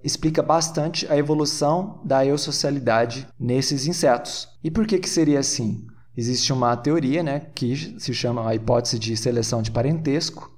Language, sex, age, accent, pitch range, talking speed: Portuguese, male, 20-39, Brazilian, 125-160 Hz, 155 wpm